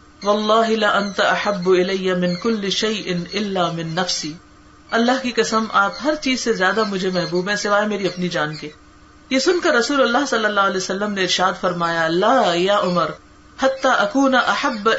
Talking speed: 175 wpm